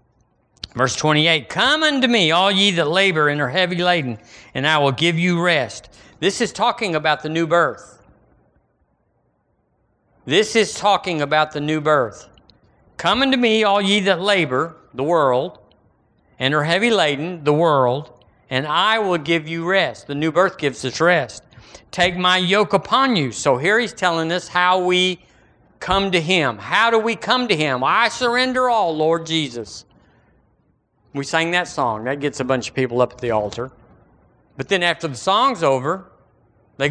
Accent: American